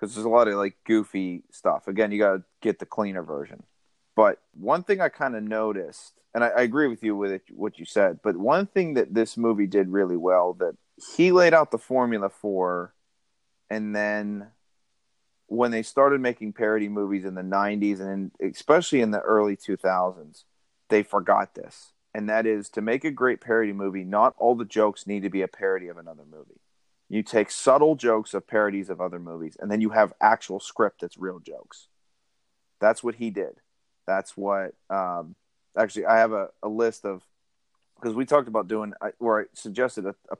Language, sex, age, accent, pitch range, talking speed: English, male, 30-49, American, 95-115 Hz, 195 wpm